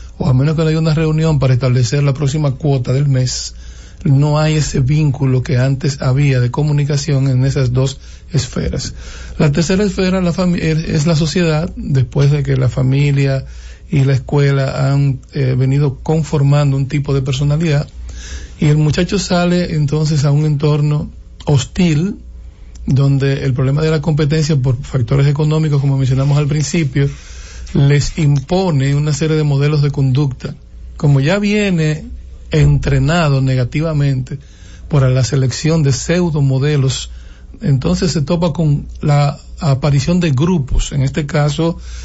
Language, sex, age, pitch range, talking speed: English, male, 60-79, 130-155 Hz, 150 wpm